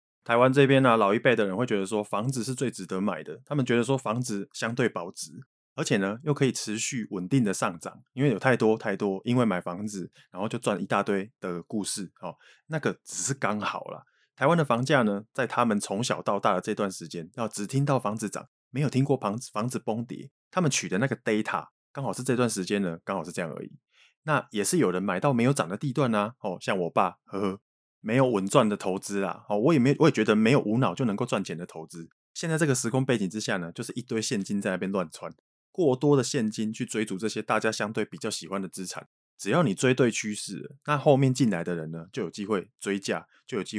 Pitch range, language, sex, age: 100-130 Hz, Chinese, male, 20-39